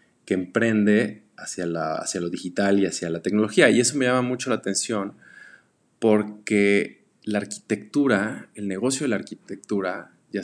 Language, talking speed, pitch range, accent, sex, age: Spanish, 150 wpm, 90-105 Hz, Mexican, male, 20-39